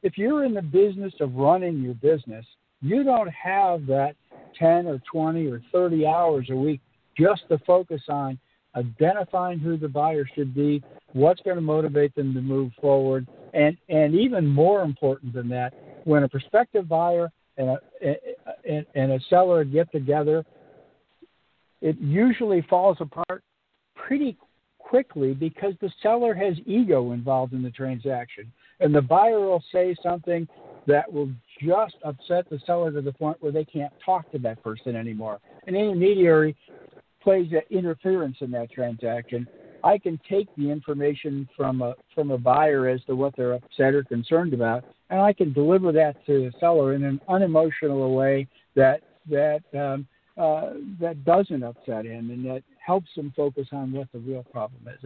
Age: 60-79